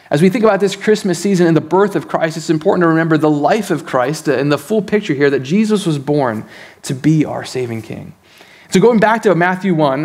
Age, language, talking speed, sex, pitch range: 30-49, English, 240 wpm, male, 150-195 Hz